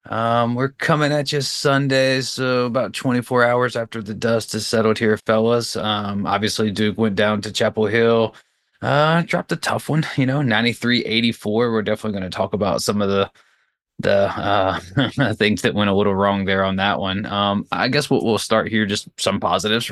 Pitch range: 95-115 Hz